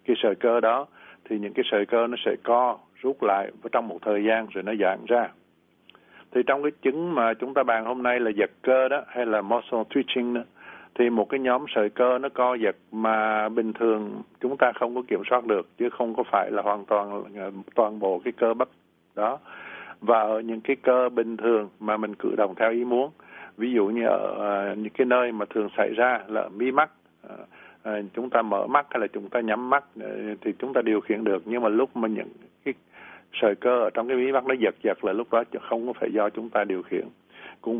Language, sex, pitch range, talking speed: Vietnamese, male, 105-125 Hz, 235 wpm